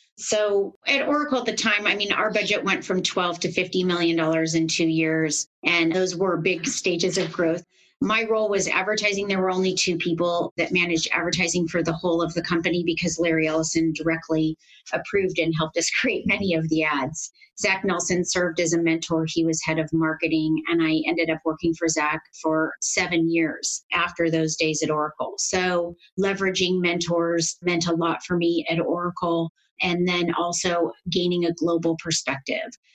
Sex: female